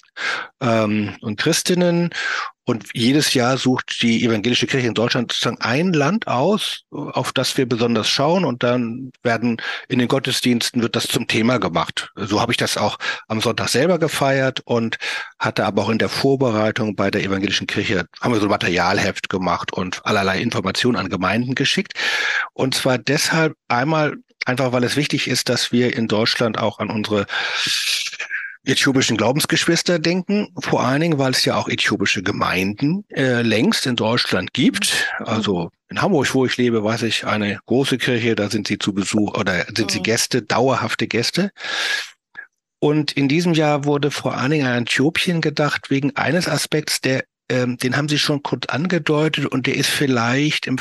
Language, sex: German, male